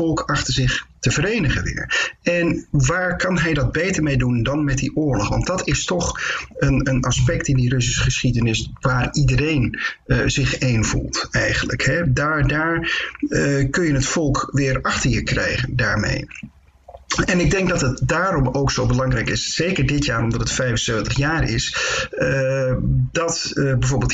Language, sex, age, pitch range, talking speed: Dutch, male, 50-69, 125-155 Hz, 170 wpm